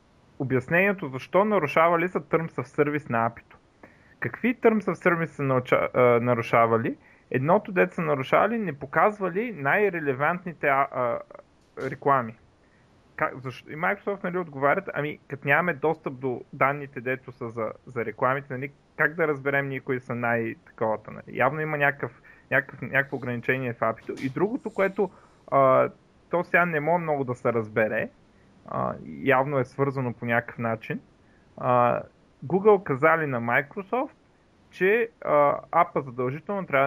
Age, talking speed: 30-49, 145 wpm